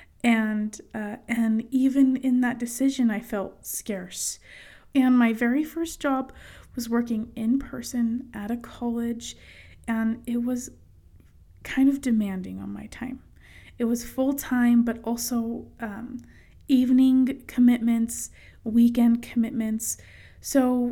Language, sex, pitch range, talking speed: English, female, 210-255 Hz, 125 wpm